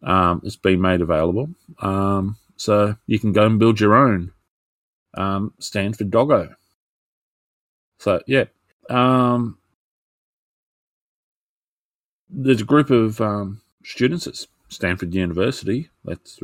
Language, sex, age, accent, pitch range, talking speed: English, male, 30-49, Australian, 95-115 Hz, 115 wpm